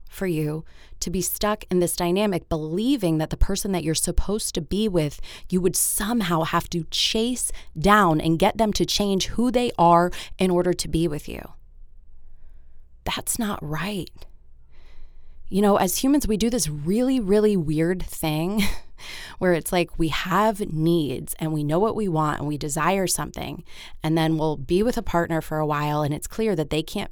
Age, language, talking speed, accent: 20-39, English, 190 wpm, American